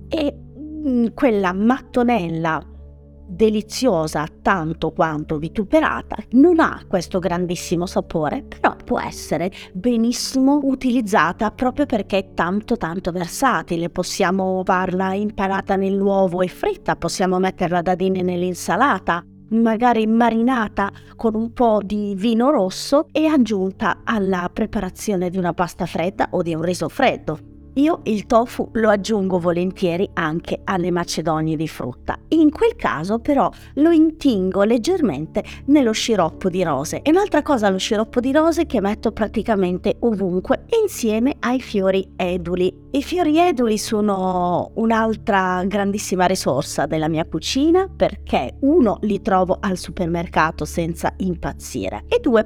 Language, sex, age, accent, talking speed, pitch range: Italian, female, 30-49, native, 125 wpm, 180-245 Hz